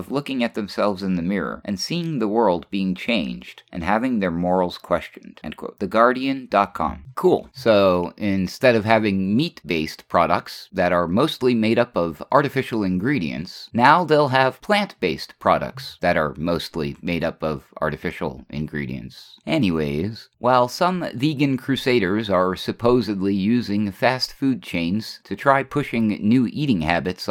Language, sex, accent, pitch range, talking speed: English, male, American, 90-125 Hz, 145 wpm